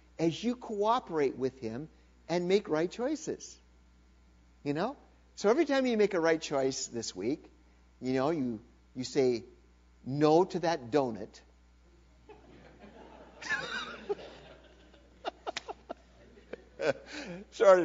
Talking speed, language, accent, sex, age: 105 wpm, English, American, male, 50-69